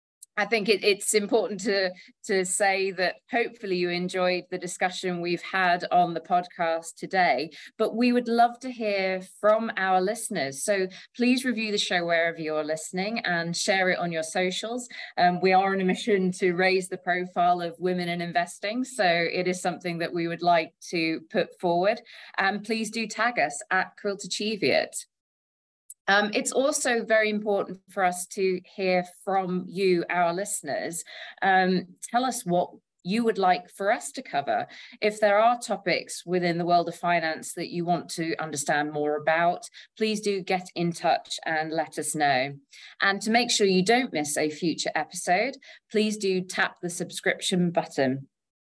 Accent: British